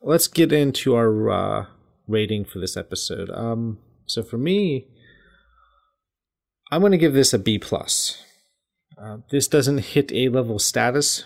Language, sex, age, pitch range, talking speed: English, male, 30-49, 110-130 Hz, 145 wpm